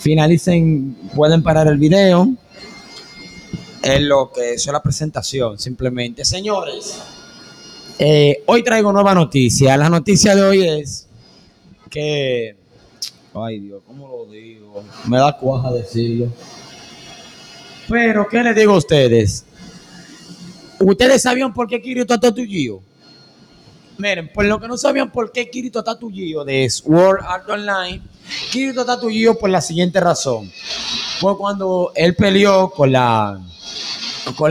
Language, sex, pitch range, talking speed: Spanish, male, 140-200 Hz, 130 wpm